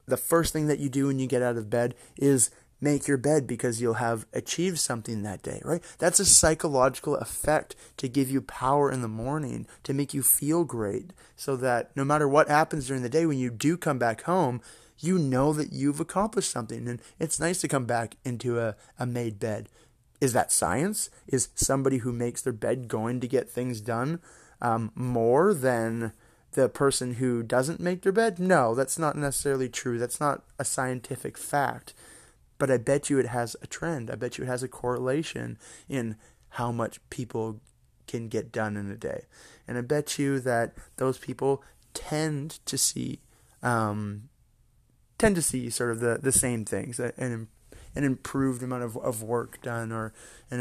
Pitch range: 115-140 Hz